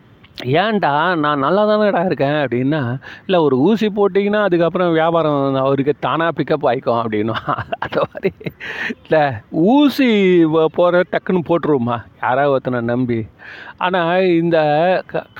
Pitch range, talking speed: 130-170 Hz, 120 wpm